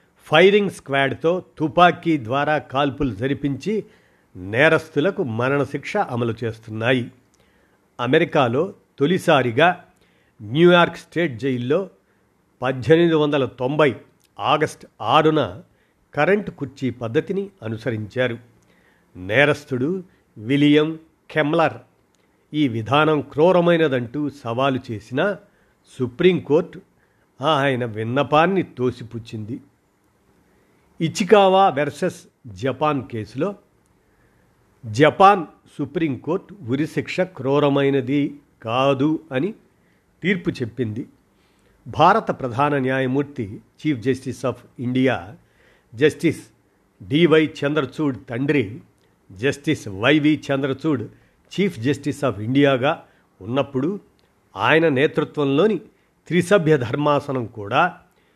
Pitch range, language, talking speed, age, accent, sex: 125-155 Hz, Telugu, 75 wpm, 50-69, native, male